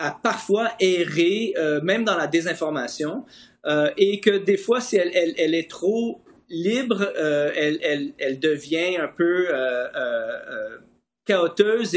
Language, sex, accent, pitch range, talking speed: French, male, Canadian, 165-220 Hz, 150 wpm